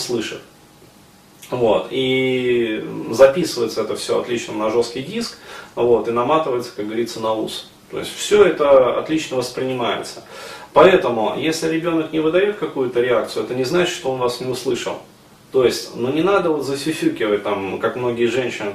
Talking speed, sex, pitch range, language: 155 wpm, male, 120-200 Hz, Russian